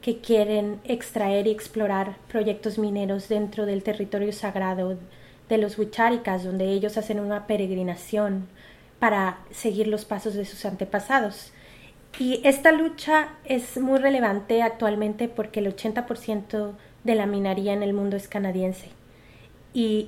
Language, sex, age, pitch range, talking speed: Spanish, female, 30-49, 200-230 Hz, 135 wpm